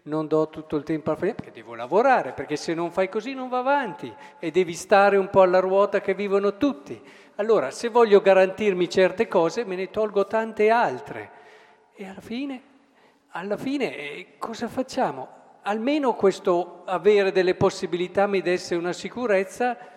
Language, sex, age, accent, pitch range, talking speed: Italian, male, 50-69, native, 160-205 Hz, 165 wpm